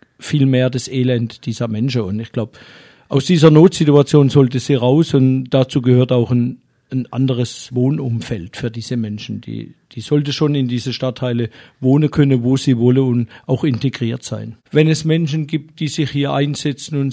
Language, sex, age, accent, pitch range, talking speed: German, male, 50-69, German, 130-150 Hz, 180 wpm